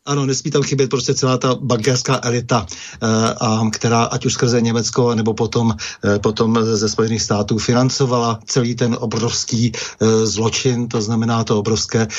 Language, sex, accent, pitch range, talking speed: Czech, male, native, 110-125 Hz, 160 wpm